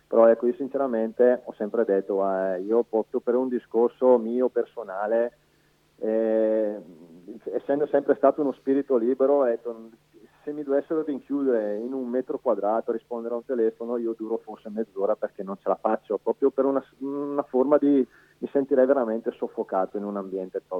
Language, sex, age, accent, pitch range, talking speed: Italian, male, 30-49, native, 100-130 Hz, 165 wpm